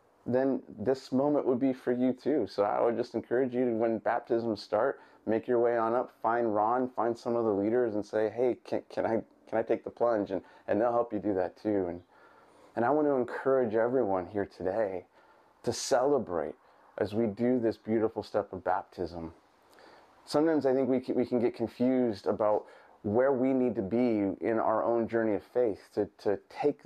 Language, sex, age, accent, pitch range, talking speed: English, male, 30-49, American, 110-125 Hz, 205 wpm